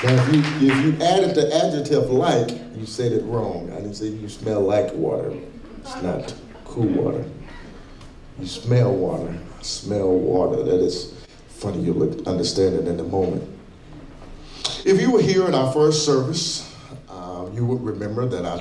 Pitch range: 110-130 Hz